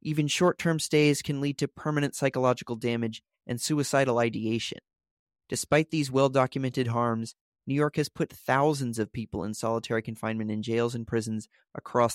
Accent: American